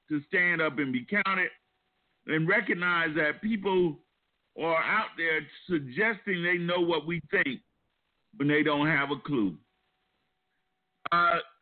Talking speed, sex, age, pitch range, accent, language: 135 wpm, male, 50-69, 150-195 Hz, American, English